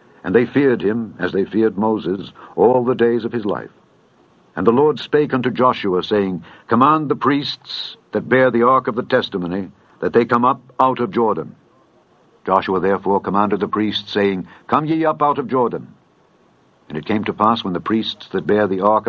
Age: 60-79